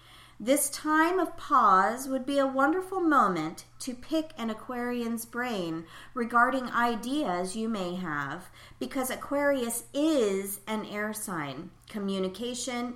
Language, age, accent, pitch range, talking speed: English, 40-59, American, 195-250 Hz, 120 wpm